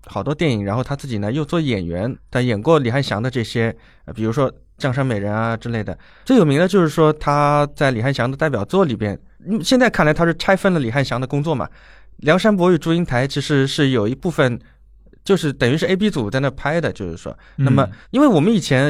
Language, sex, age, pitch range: Chinese, male, 20-39, 115-150 Hz